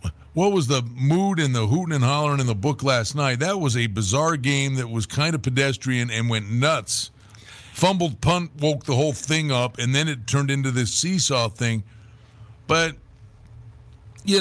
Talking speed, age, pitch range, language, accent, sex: 185 wpm, 50-69, 120-170 Hz, English, American, male